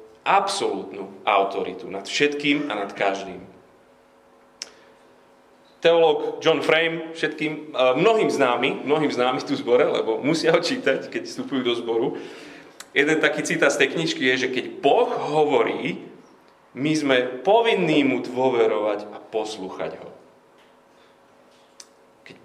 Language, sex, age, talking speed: Slovak, male, 30-49, 120 wpm